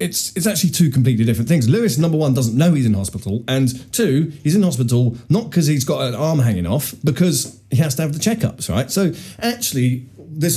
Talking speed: 220 wpm